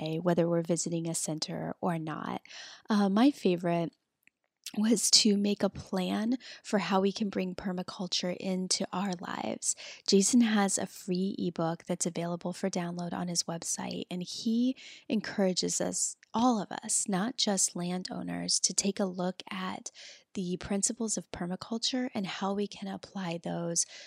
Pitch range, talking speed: 175-205 Hz, 155 wpm